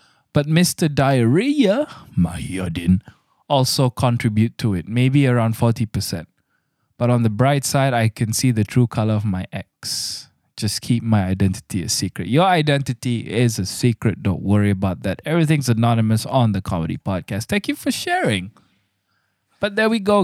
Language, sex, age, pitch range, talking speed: English, male, 20-39, 105-150 Hz, 165 wpm